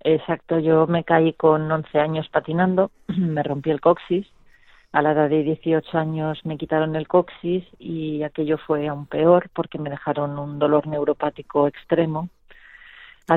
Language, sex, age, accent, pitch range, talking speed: Spanish, female, 40-59, Spanish, 150-165 Hz, 155 wpm